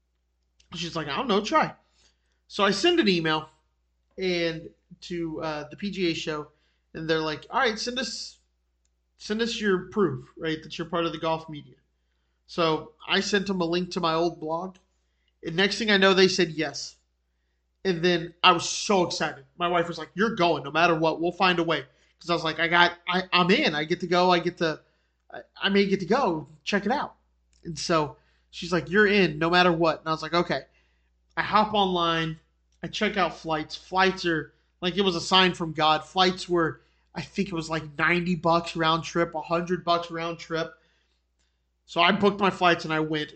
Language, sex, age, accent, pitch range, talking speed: English, male, 30-49, American, 155-185 Hz, 210 wpm